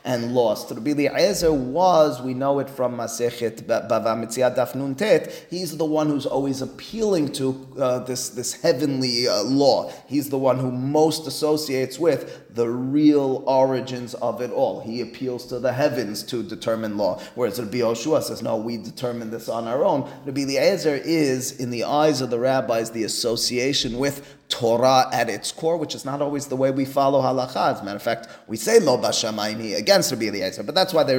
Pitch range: 120-145 Hz